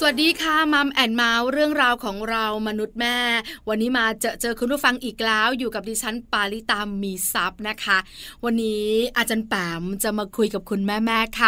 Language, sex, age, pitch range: Thai, female, 20-39, 210-255 Hz